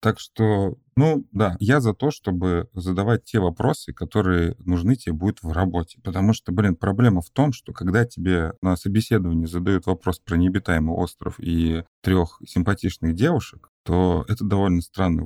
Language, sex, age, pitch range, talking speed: Russian, male, 30-49, 85-110 Hz, 160 wpm